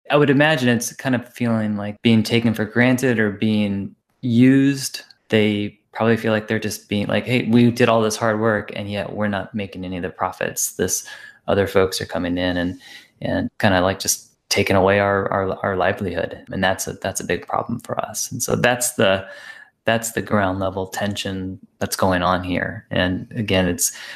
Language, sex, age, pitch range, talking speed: English, male, 20-39, 100-115 Hz, 205 wpm